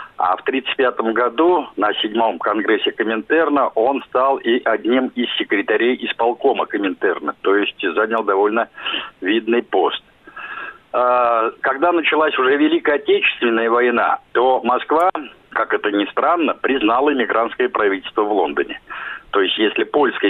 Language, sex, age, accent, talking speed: Russian, male, 50-69, native, 125 wpm